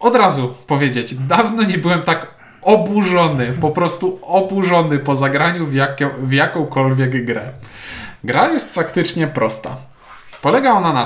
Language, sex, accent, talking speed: Polish, male, native, 135 wpm